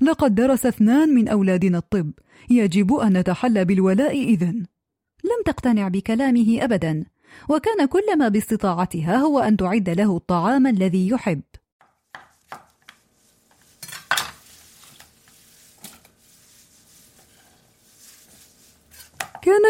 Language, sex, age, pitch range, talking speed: Arabic, female, 30-49, 210-275 Hz, 80 wpm